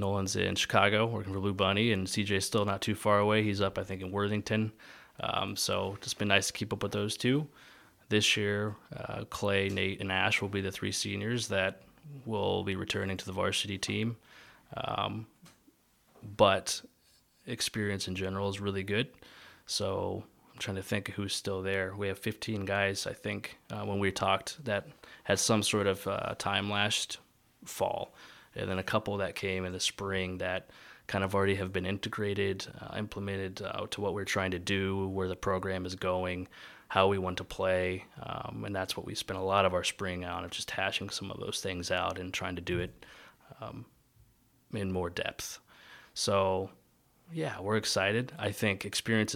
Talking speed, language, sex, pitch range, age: 190 wpm, English, male, 95-105 Hz, 20-39